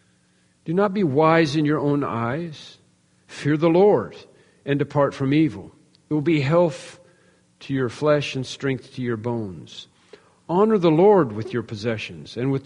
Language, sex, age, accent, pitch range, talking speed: English, male, 50-69, American, 115-150 Hz, 165 wpm